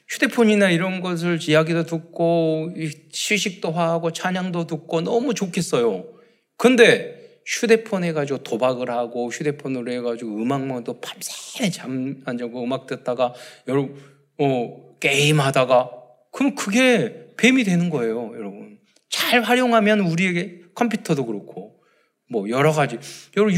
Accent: native